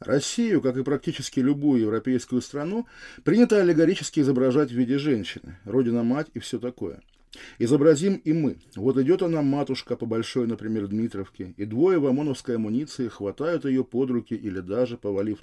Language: Russian